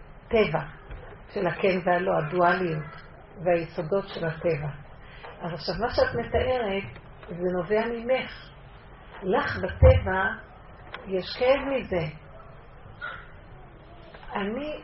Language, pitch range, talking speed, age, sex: Hebrew, 175-220 Hz, 90 wpm, 40-59, female